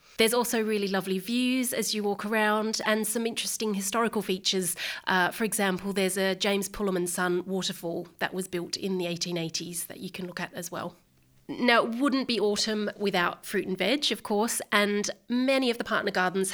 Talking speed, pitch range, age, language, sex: 190 wpm, 185-215 Hz, 30-49, English, female